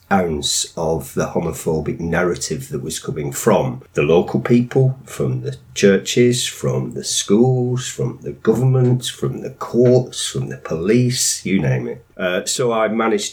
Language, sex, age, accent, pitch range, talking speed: English, male, 40-59, British, 95-130 Hz, 155 wpm